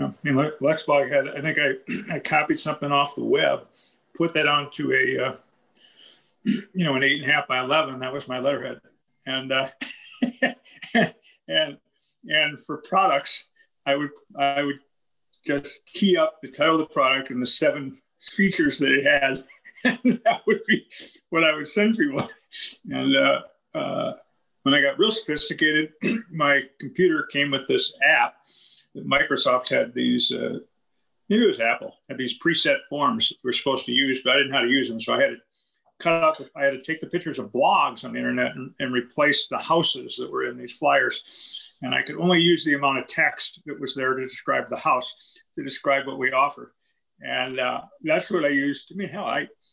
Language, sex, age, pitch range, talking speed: English, male, 40-59, 135-195 Hz, 195 wpm